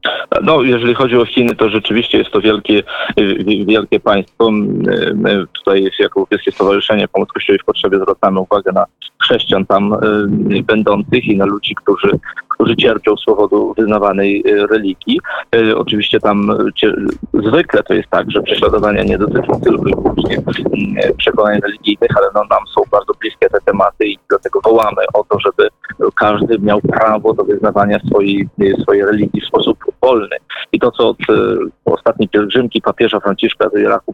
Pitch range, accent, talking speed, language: 105-145 Hz, native, 155 wpm, Polish